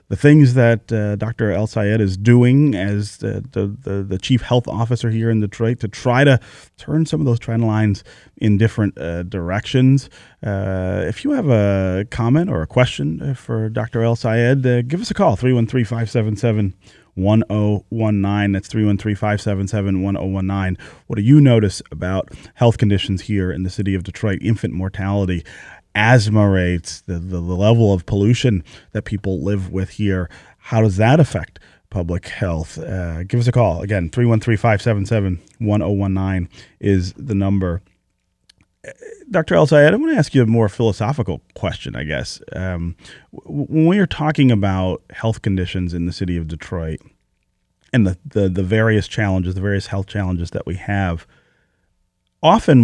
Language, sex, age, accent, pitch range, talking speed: English, male, 30-49, American, 95-115 Hz, 155 wpm